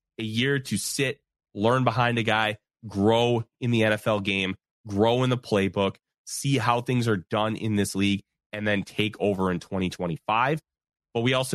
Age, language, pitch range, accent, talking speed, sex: 30-49, English, 105-150 Hz, American, 175 wpm, male